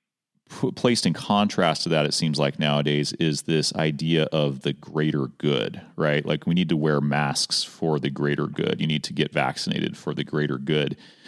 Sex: male